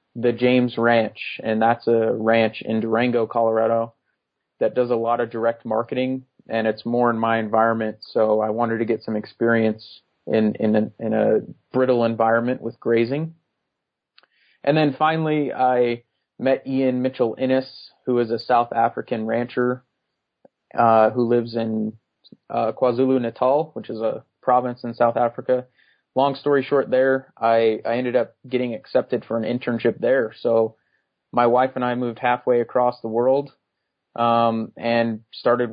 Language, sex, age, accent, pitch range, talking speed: English, male, 30-49, American, 115-125 Hz, 155 wpm